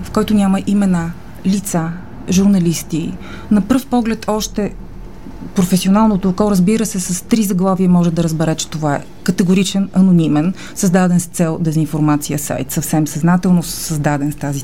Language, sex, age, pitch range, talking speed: Bulgarian, female, 30-49, 165-205 Hz, 145 wpm